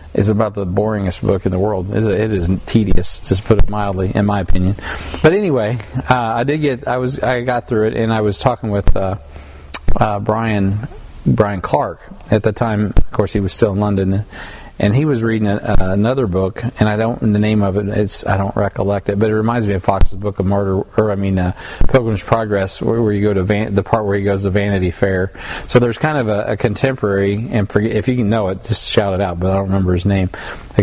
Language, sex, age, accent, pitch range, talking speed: English, male, 40-59, American, 95-110 Hz, 245 wpm